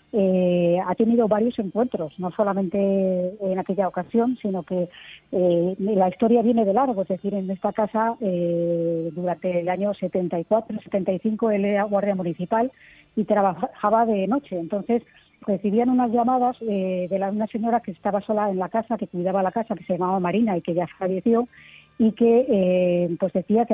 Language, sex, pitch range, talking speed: Spanish, female, 180-220 Hz, 170 wpm